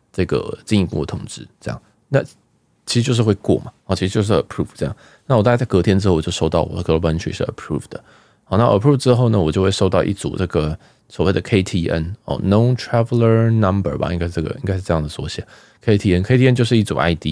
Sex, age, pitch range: male, 20-39, 80-105 Hz